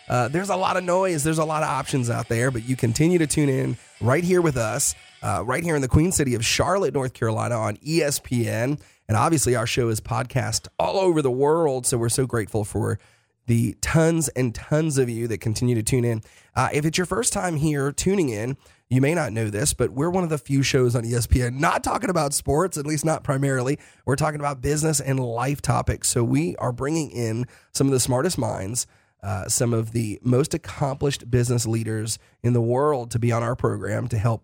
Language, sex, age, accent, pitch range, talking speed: English, male, 30-49, American, 115-145 Hz, 225 wpm